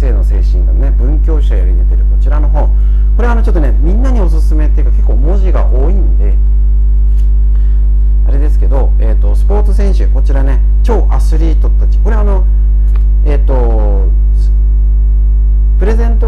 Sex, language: male, Japanese